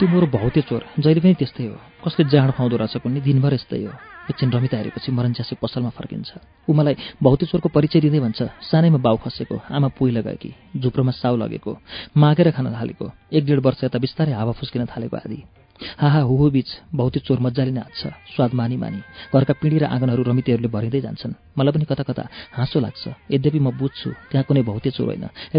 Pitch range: 120-150 Hz